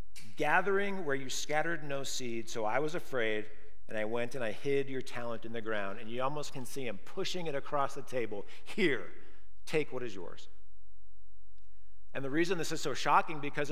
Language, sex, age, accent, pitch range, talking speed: English, male, 50-69, American, 105-155 Hz, 195 wpm